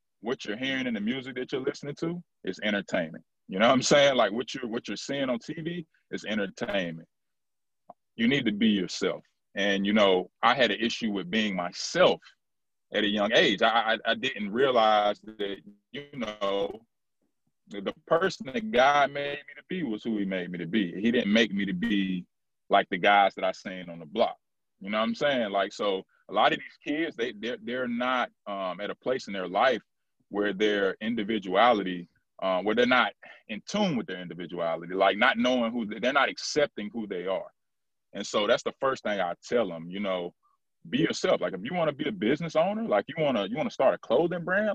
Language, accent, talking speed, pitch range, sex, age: English, American, 220 wpm, 100-145 Hz, male, 30-49